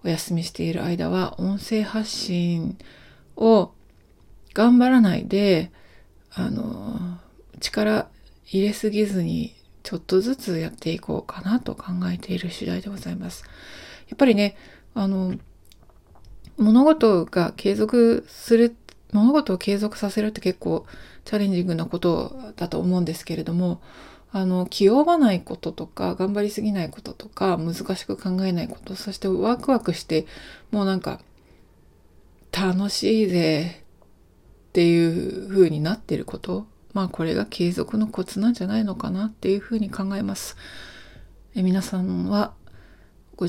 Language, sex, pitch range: Japanese, female, 170-215 Hz